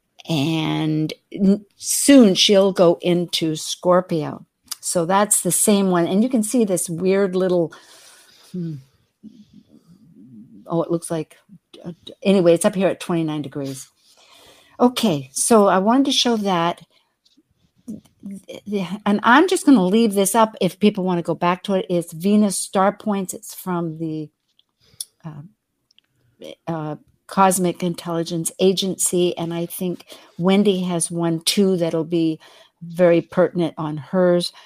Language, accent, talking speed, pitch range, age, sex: English, American, 135 wpm, 165-205 Hz, 50-69, female